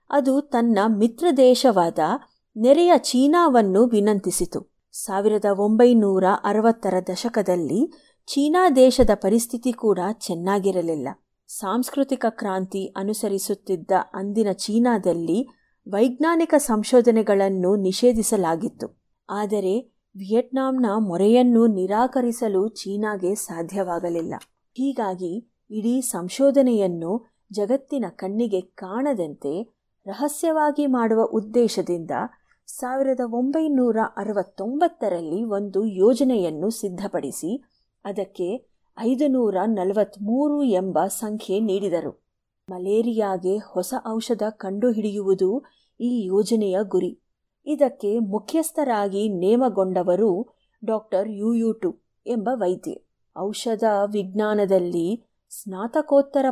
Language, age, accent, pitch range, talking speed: Kannada, 30-49, native, 195-245 Hz, 70 wpm